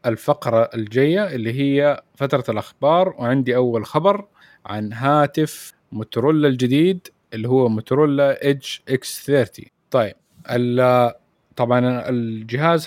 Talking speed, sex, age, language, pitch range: 105 wpm, male, 20-39, Arabic, 115-140 Hz